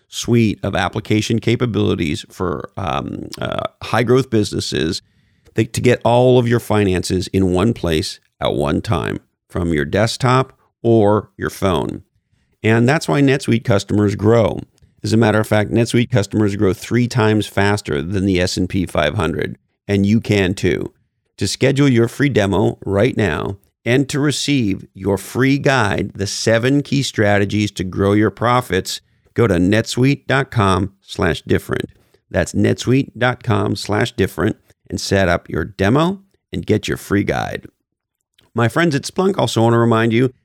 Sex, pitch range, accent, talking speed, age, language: male, 95-120 Hz, American, 150 wpm, 40-59, English